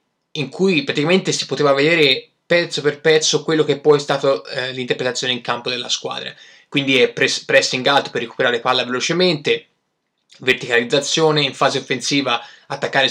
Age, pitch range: 20-39, 120-145 Hz